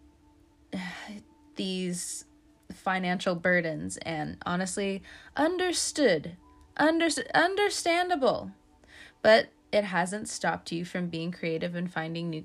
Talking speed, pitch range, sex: 90 wpm, 170-245 Hz, female